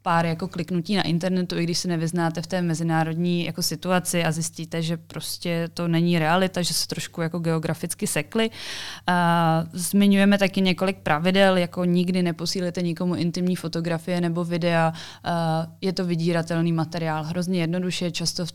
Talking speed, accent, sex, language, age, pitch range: 150 wpm, native, female, Czech, 20-39, 155-175 Hz